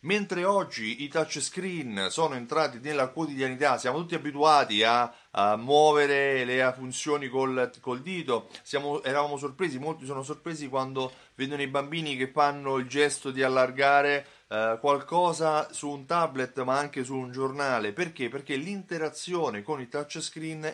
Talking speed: 150 wpm